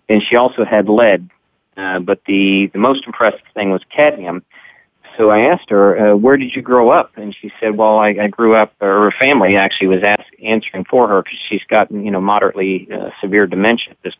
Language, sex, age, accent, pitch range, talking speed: English, male, 40-59, American, 100-120 Hz, 220 wpm